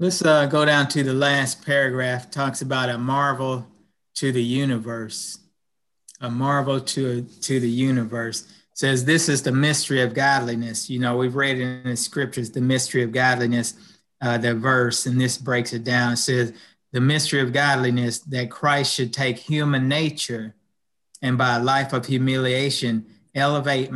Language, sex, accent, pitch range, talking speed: English, male, American, 120-140 Hz, 165 wpm